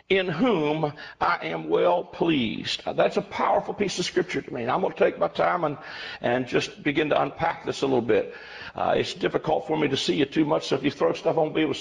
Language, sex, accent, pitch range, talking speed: English, male, American, 160-225 Hz, 260 wpm